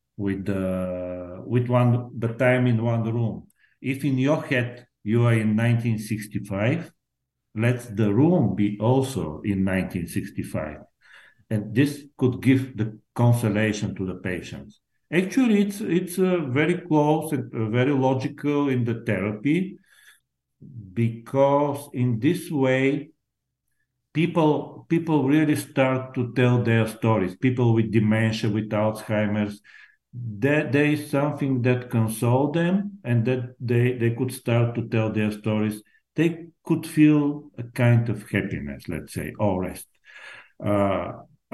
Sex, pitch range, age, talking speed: male, 105-140 Hz, 50-69, 135 wpm